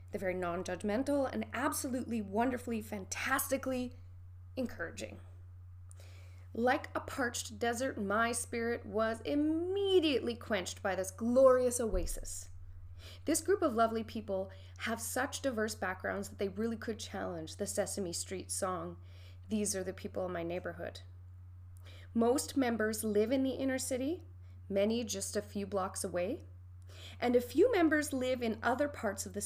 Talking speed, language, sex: 140 wpm, English, female